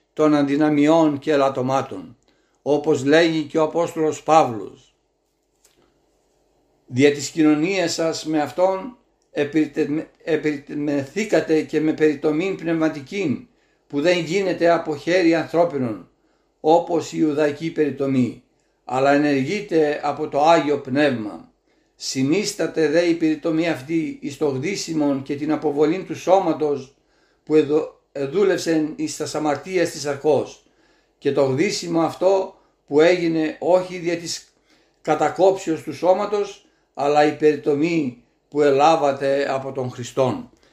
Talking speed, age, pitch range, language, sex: 115 wpm, 60-79, 145-170 Hz, Greek, male